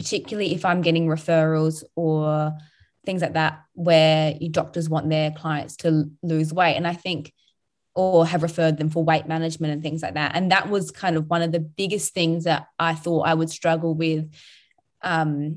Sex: female